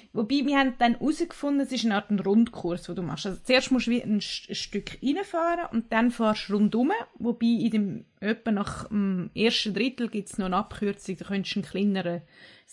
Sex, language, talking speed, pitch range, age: female, German, 205 wpm, 200-245 Hz, 20-39